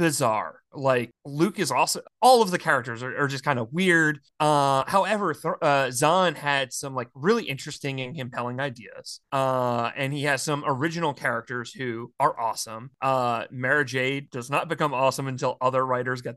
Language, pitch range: English, 130-160 Hz